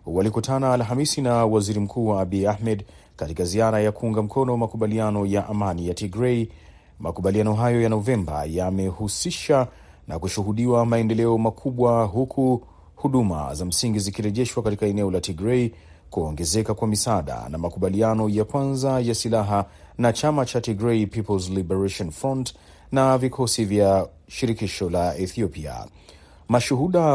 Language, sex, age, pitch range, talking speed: Swahili, male, 30-49, 95-120 Hz, 130 wpm